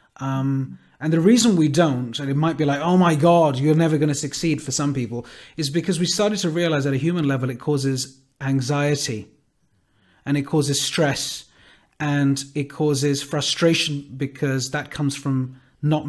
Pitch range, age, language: 140-175 Hz, 30-49, English